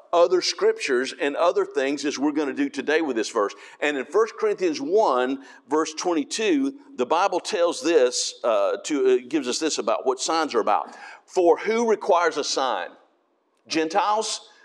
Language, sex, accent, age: English, male, American, 50-69